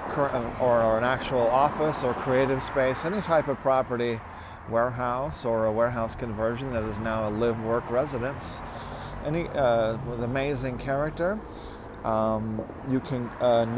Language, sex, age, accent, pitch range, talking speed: English, male, 40-59, American, 110-130 Hz, 140 wpm